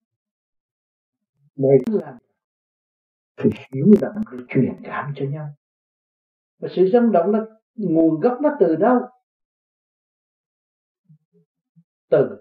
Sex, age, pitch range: male, 60-79, 130-210 Hz